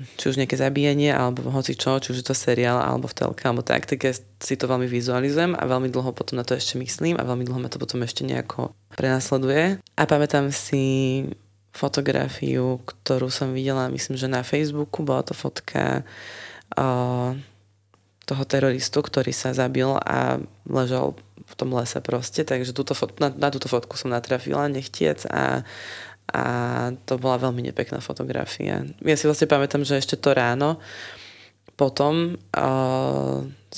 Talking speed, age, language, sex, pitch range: 165 wpm, 20-39, Slovak, female, 125-140 Hz